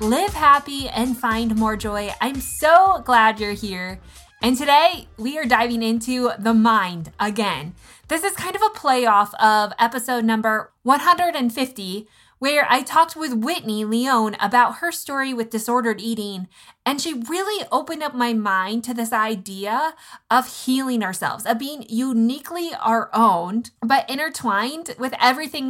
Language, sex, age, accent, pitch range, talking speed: English, female, 20-39, American, 215-270 Hz, 150 wpm